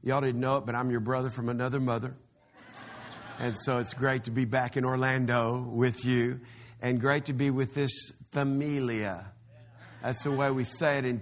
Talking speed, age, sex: 195 wpm, 50-69, male